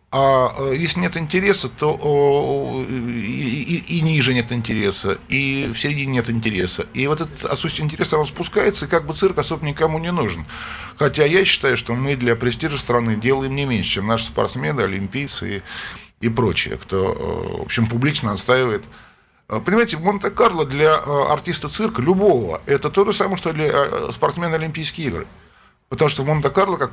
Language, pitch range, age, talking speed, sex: Russian, 115-155 Hz, 50-69, 170 wpm, male